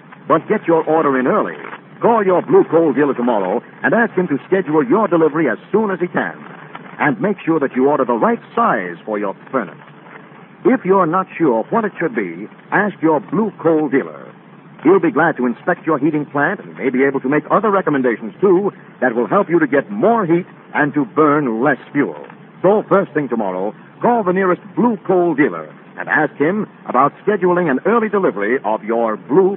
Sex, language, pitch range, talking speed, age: male, English, 145-205 Hz, 205 wpm, 60-79